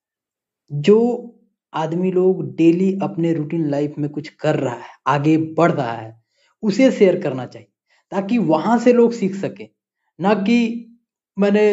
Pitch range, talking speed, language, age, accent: 145-190 Hz, 150 wpm, Hindi, 20-39, native